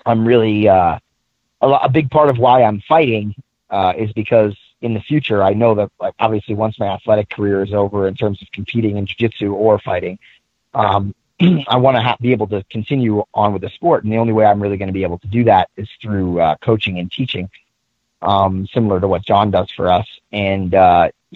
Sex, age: male, 30-49